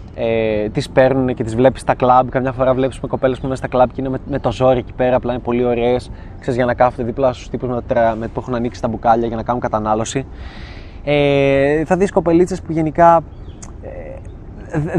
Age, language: 20-39, Greek